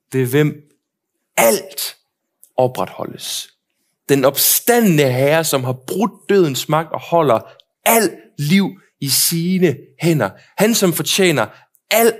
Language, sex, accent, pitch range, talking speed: Danish, male, native, 150-225 Hz, 110 wpm